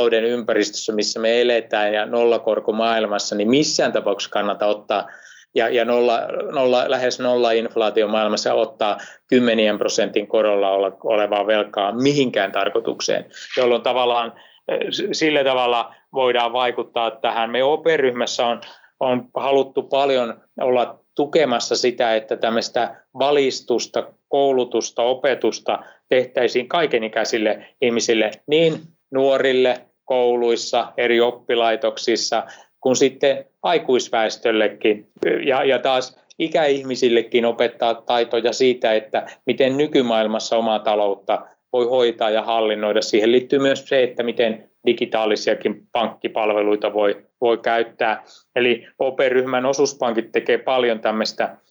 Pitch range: 110-135 Hz